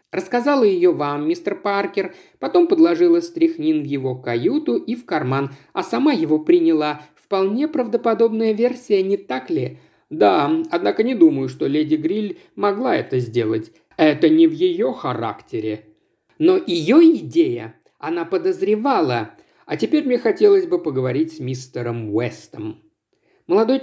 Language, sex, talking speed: Russian, male, 135 wpm